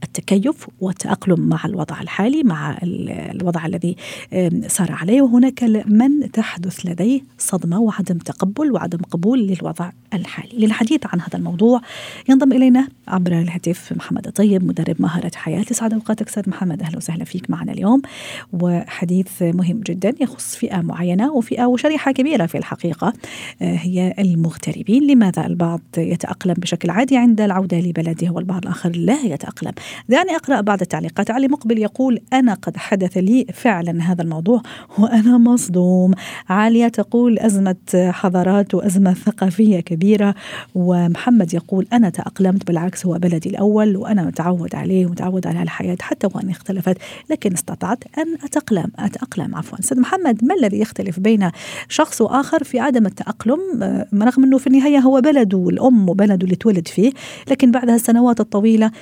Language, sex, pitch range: Arabic, female, 180-235 Hz